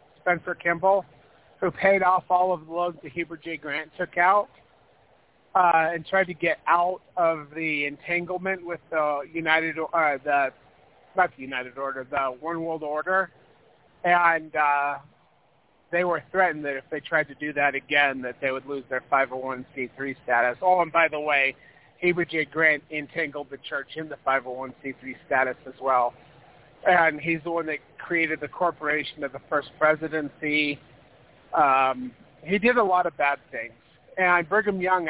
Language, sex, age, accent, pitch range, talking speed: English, male, 30-49, American, 145-175 Hz, 165 wpm